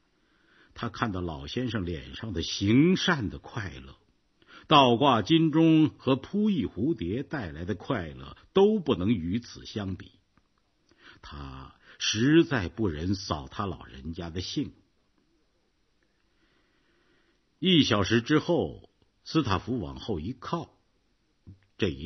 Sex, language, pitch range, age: male, Chinese, 90-140 Hz, 50-69